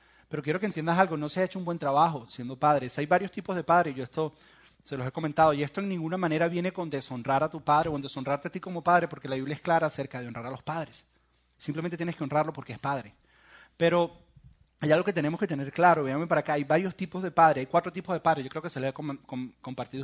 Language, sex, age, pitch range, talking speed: Spanish, male, 30-49, 130-170 Hz, 265 wpm